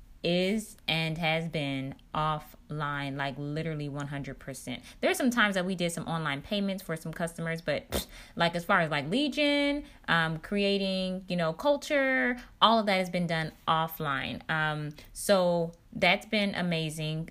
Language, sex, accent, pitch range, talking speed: English, female, American, 150-180 Hz, 160 wpm